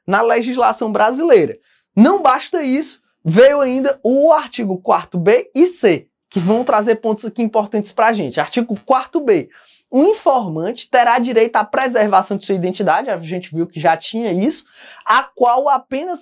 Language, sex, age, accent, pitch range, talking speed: English, male, 20-39, Brazilian, 200-260 Hz, 160 wpm